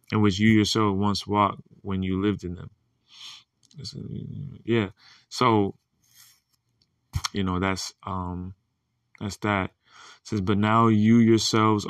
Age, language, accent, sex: 20-39, English, American, male